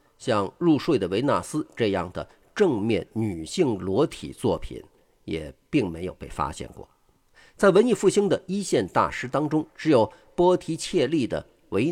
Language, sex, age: Chinese, male, 50-69